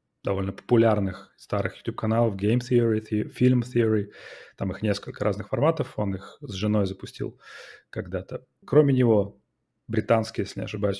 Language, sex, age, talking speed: Russian, male, 30-49, 135 wpm